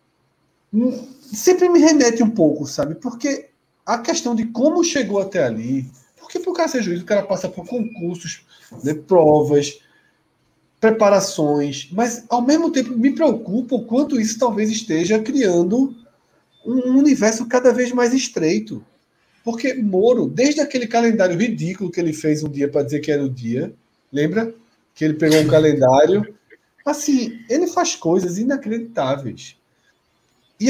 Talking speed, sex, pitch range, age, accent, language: 145 wpm, male, 160-265 Hz, 40-59, Brazilian, Portuguese